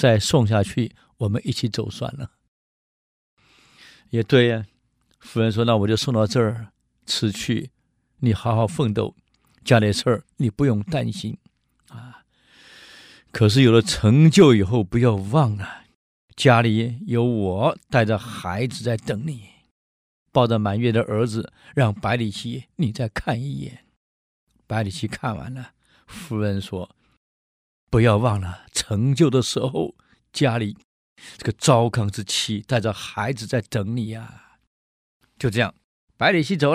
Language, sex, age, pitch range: Chinese, male, 50-69, 100-125 Hz